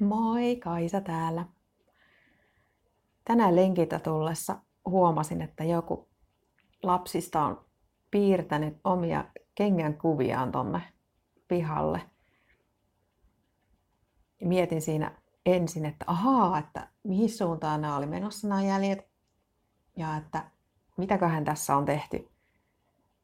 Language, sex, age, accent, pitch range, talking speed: Finnish, female, 30-49, native, 155-190 Hz, 90 wpm